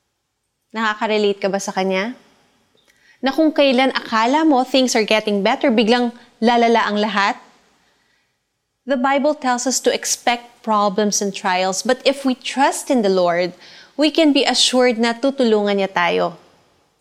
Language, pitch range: Filipino, 205-260 Hz